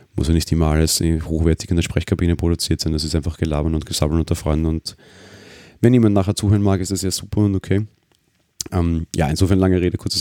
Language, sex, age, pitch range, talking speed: German, male, 30-49, 80-95 Hz, 215 wpm